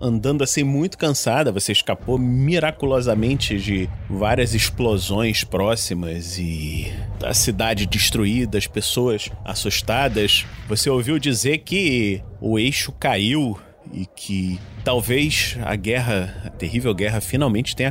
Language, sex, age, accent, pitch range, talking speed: Portuguese, male, 30-49, Brazilian, 100-130 Hz, 115 wpm